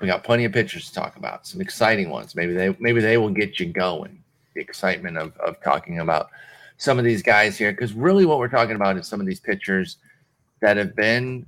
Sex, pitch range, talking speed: male, 100-140 Hz, 230 wpm